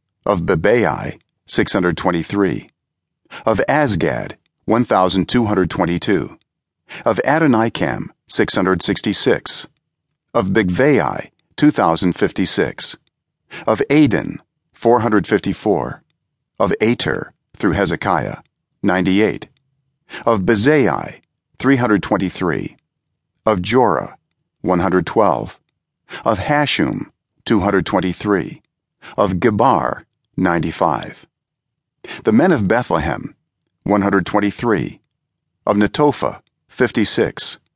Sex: male